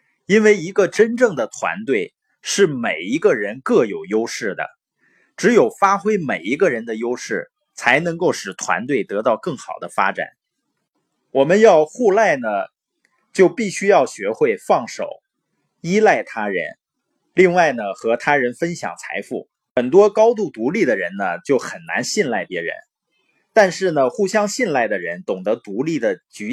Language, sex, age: Chinese, male, 20-39